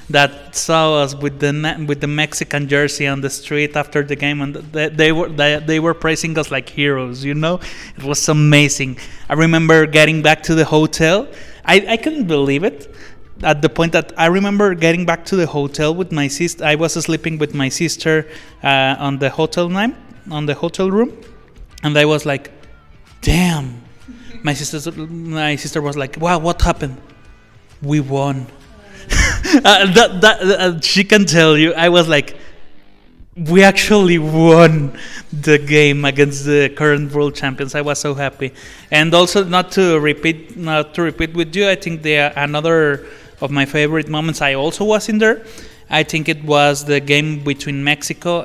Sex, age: male, 20-39